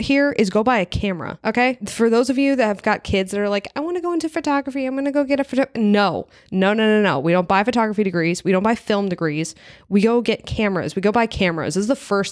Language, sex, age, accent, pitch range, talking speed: English, female, 20-39, American, 180-220 Hz, 285 wpm